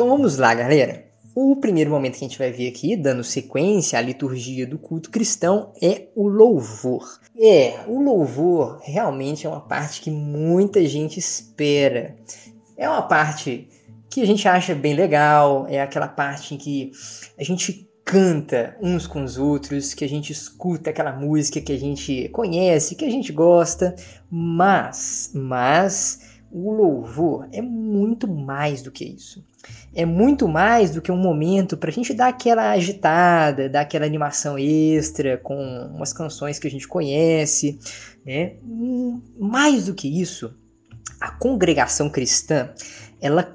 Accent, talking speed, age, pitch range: Brazilian, 155 wpm, 20-39, 135-185 Hz